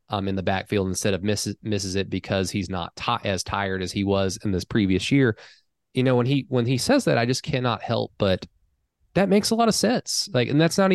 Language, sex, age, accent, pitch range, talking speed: English, male, 20-39, American, 100-135 Hz, 245 wpm